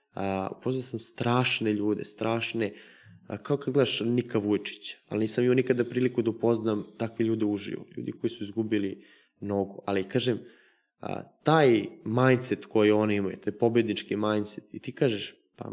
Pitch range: 105-130 Hz